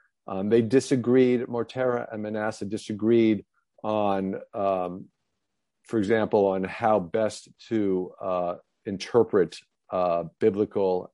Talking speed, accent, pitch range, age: 100 wpm, American, 95-130 Hz, 50-69